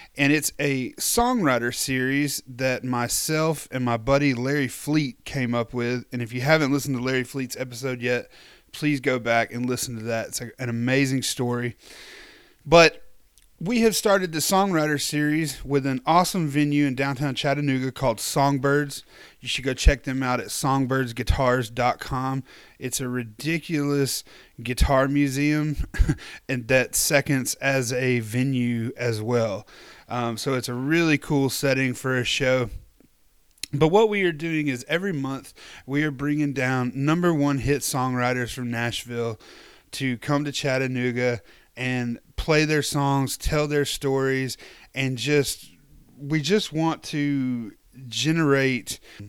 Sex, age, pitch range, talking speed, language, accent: male, 30-49, 125-145 Hz, 145 wpm, English, American